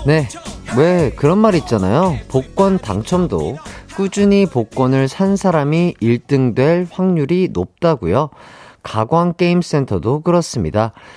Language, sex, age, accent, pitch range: Korean, male, 40-59, native, 110-180 Hz